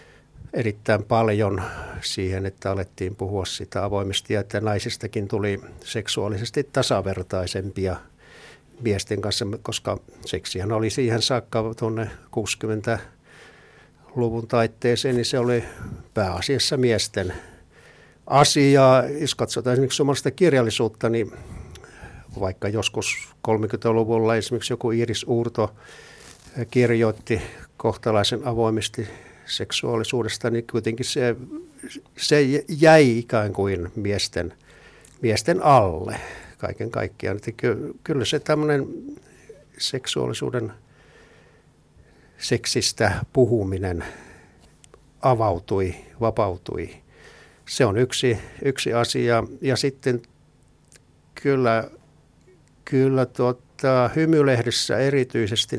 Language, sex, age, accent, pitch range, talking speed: Finnish, male, 60-79, native, 105-125 Hz, 85 wpm